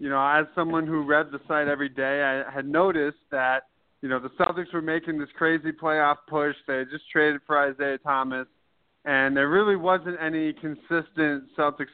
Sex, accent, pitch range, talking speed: male, American, 140-170 Hz, 190 wpm